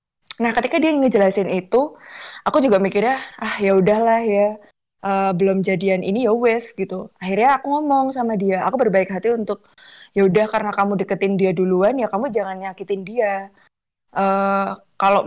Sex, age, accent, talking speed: female, 20-39, native, 160 wpm